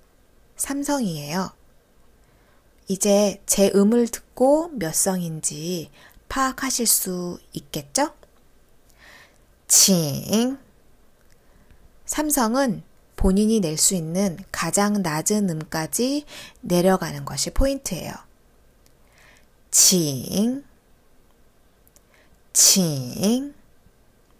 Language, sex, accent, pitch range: Korean, female, native, 175-245 Hz